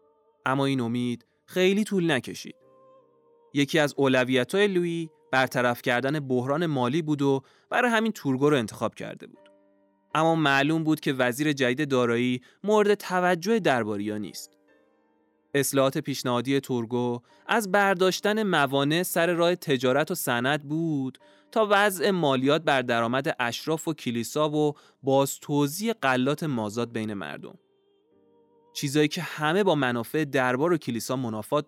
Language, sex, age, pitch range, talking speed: Persian, male, 20-39, 125-180 Hz, 135 wpm